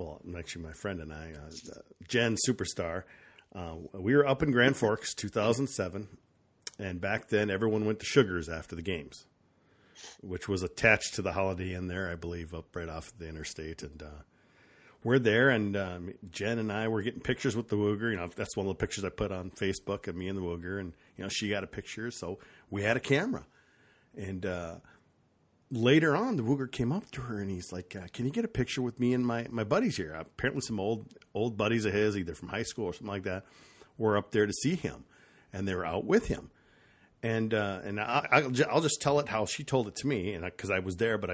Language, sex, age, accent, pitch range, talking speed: English, male, 40-59, American, 90-120 Hz, 230 wpm